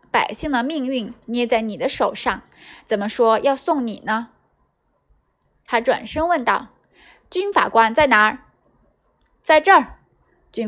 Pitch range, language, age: 220-325 Hz, Chinese, 20-39